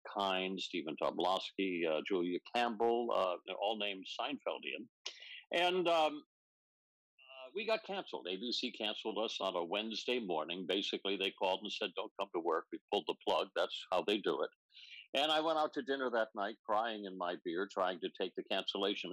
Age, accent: 60-79, American